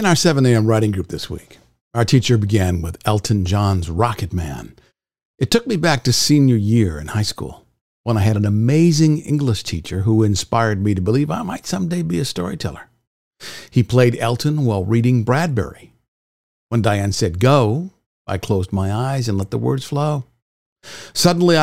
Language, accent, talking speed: English, American, 180 wpm